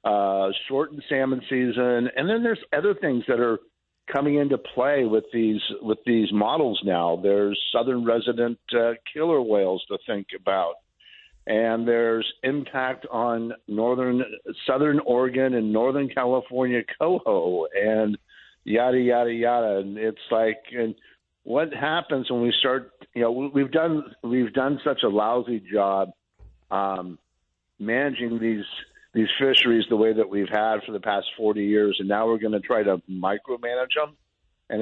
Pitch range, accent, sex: 105-135 Hz, American, male